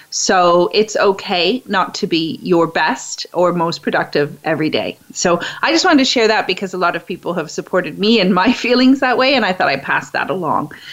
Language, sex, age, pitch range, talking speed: English, female, 30-49, 175-240 Hz, 220 wpm